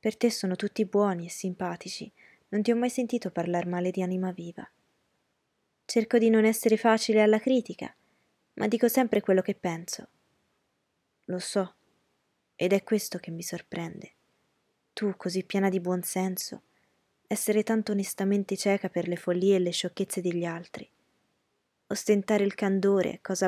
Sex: female